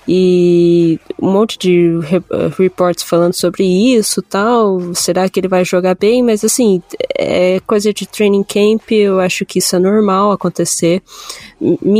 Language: Portuguese